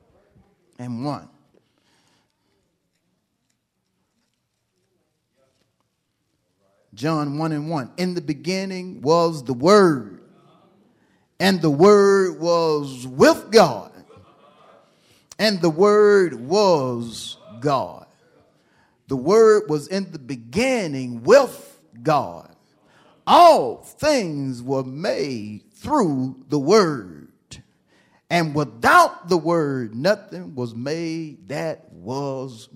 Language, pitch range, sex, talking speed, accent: English, 130-180 Hz, male, 85 wpm, American